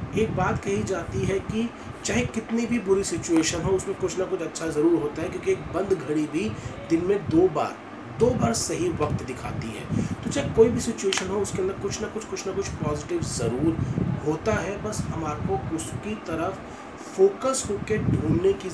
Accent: native